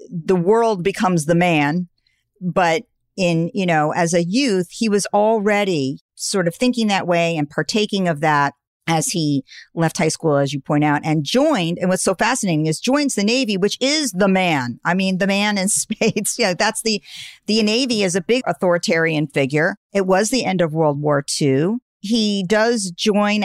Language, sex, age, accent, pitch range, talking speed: English, female, 50-69, American, 155-200 Hz, 190 wpm